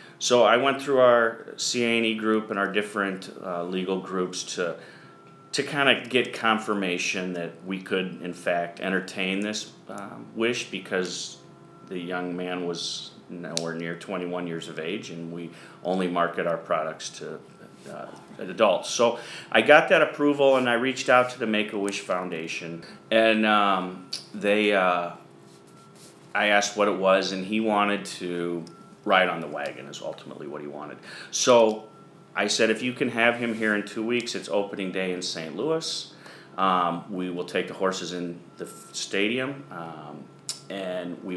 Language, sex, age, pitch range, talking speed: English, male, 40-59, 85-105 Hz, 165 wpm